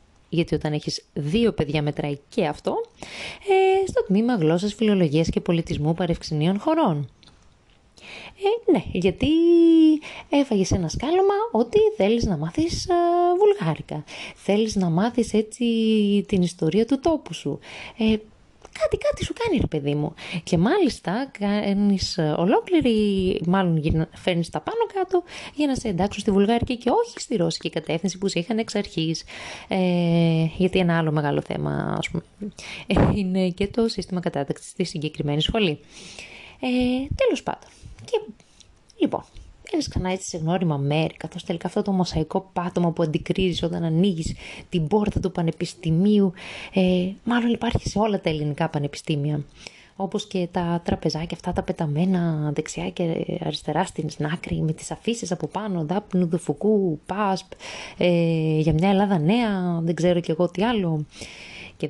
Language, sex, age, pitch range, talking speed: Greek, female, 20-39, 165-220 Hz, 140 wpm